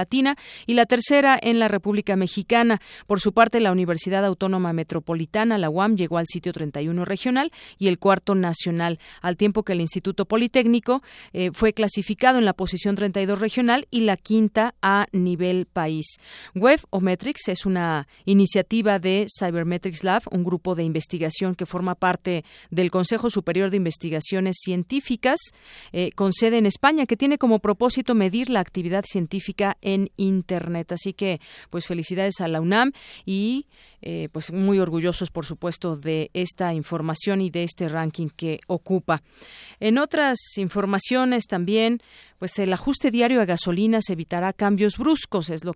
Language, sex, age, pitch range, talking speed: Spanish, female, 40-59, 180-230 Hz, 160 wpm